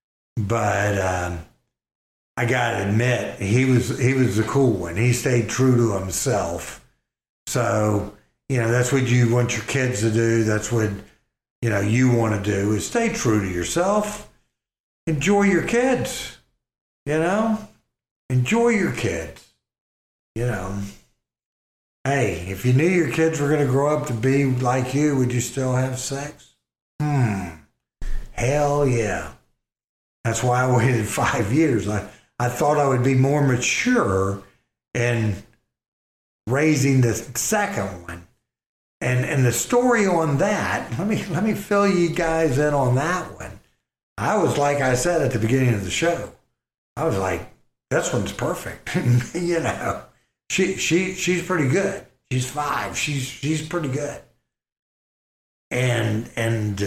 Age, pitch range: 60-79, 105-150 Hz